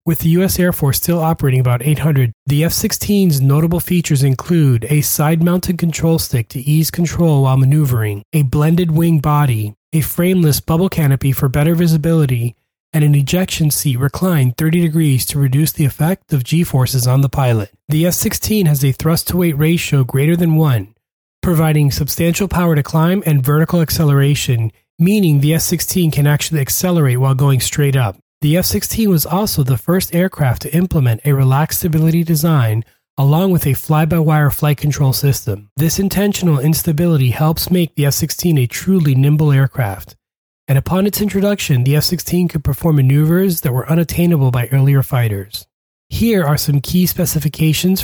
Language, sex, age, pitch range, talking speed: English, male, 30-49, 135-170 Hz, 160 wpm